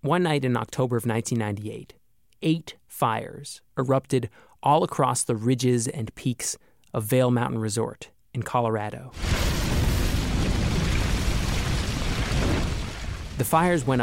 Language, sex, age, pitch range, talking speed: English, male, 20-39, 110-135 Hz, 105 wpm